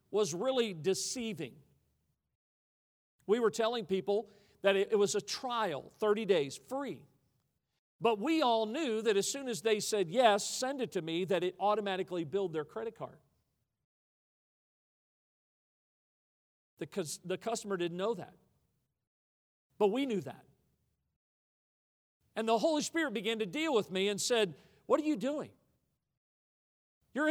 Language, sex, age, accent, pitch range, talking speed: English, male, 50-69, American, 195-235 Hz, 140 wpm